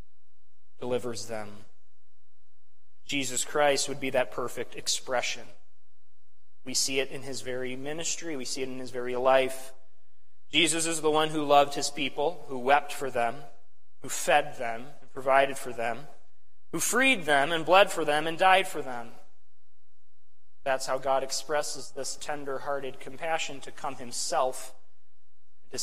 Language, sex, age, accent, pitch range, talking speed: English, male, 30-49, American, 125-155 Hz, 150 wpm